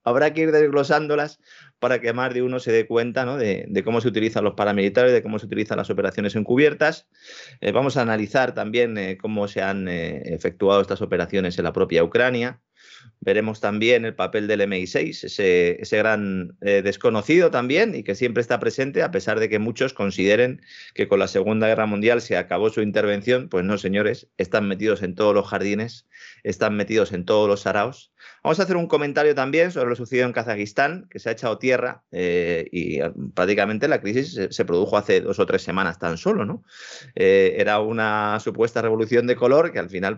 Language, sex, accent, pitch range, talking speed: Spanish, male, Spanish, 100-125 Hz, 200 wpm